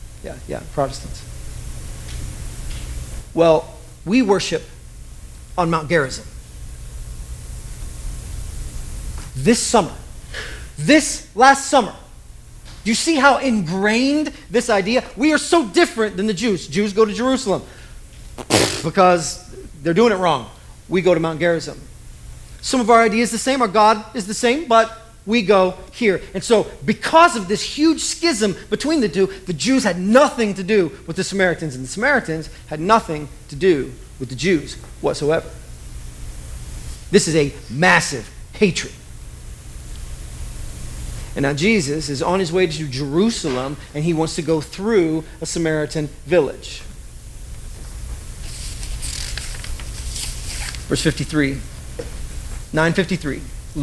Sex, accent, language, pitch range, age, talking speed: male, American, English, 135-220 Hz, 40-59, 125 wpm